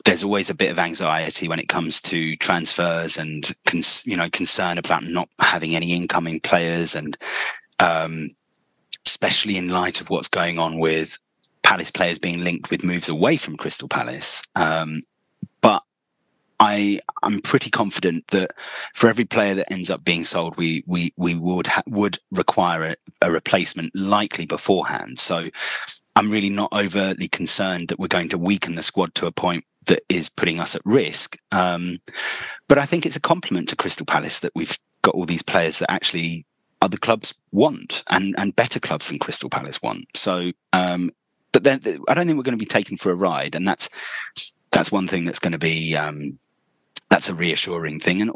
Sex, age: male, 30-49